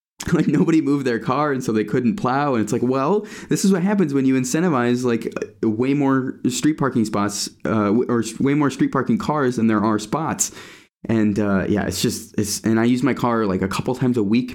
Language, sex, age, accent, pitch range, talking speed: English, male, 20-39, American, 95-125 Hz, 225 wpm